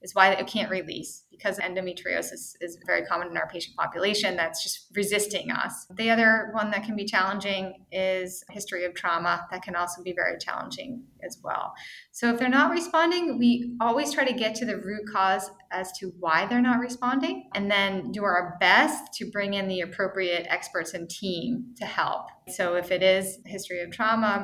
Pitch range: 185-235 Hz